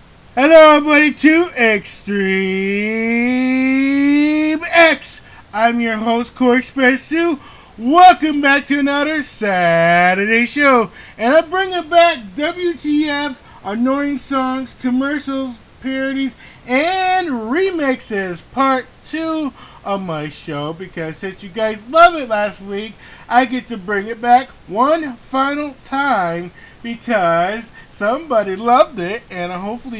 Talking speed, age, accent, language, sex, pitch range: 115 wpm, 20-39, American, English, male, 190-285 Hz